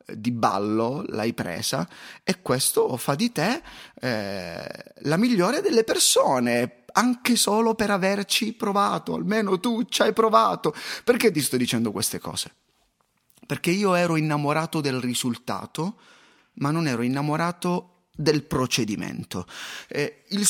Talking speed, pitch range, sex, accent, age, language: 130 wpm, 125-205 Hz, male, native, 30-49, Italian